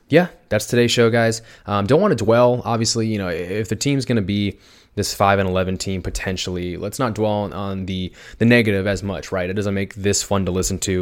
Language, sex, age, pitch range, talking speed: English, male, 20-39, 95-125 Hz, 230 wpm